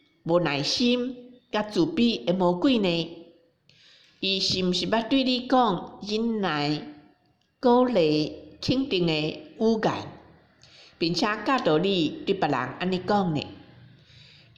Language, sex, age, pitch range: Chinese, female, 50-69, 150-215 Hz